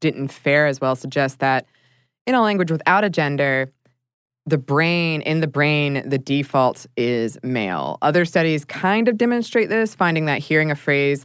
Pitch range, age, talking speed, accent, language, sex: 125-155 Hz, 20-39, 170 wpm, American, English, female